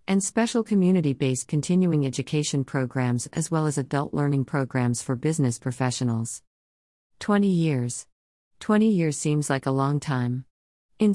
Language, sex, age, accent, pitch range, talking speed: English, female, 50-69, American, 130-155 Hz, 135 wpm